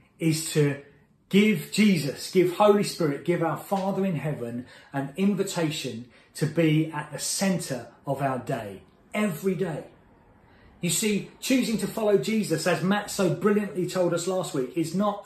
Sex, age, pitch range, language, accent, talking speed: male, 30-49, 155-205 Hz, English, British, 155 wpm